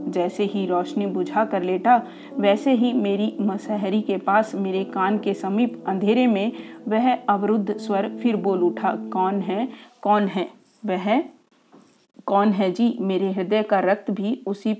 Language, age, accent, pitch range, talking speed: Hindi, 40-59, native, 190-230 Hz, 160 wpm